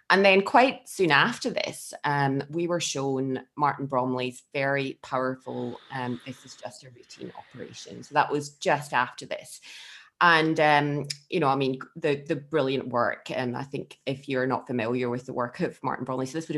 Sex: female